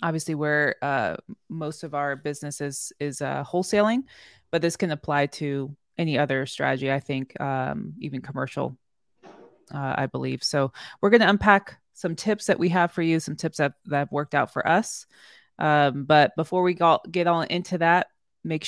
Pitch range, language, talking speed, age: 145-175 Hz, English, 185 wpm, 20-39